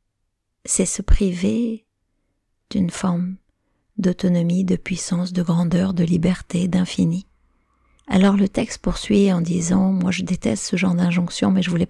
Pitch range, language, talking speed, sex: 170-190 Hz, French, 145 wpm, female